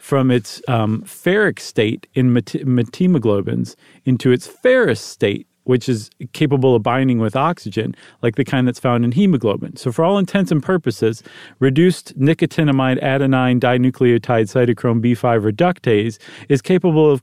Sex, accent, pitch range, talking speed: male, American, 120-150 Hz, 145 wpm